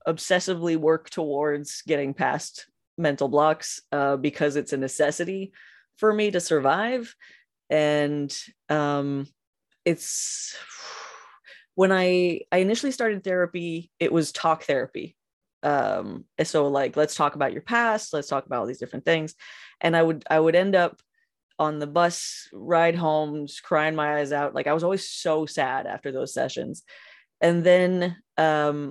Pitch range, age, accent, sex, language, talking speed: 145-175 Hz, 20-39, American, female, English, 150 wpm